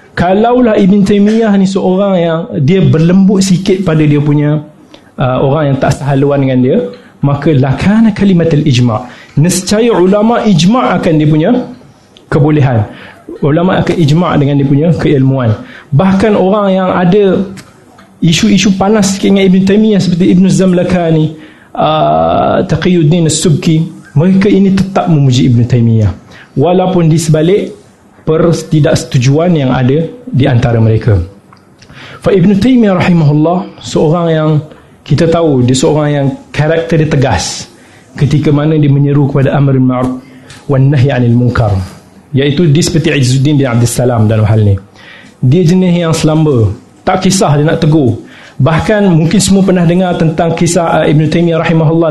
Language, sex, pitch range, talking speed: Malay, male, 140-180 Hz, 140 wpm